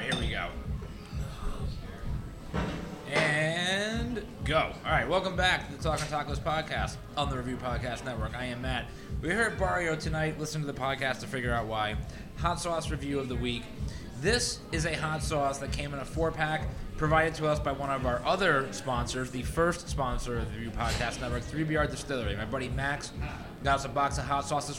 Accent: American